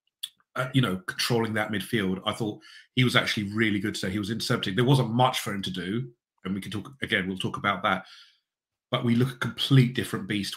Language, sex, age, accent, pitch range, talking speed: English, male, 30-49, British, 105-140 Hz, 225 wpm